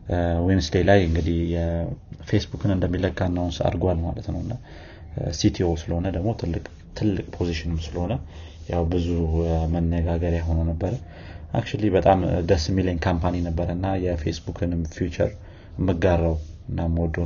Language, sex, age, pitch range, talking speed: Amharic, male, 30-49, 85-90 Hz, 105 wpm